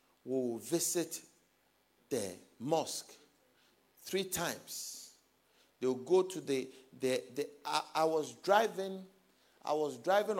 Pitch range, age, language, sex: 140-190 Hz, 50-69, English, male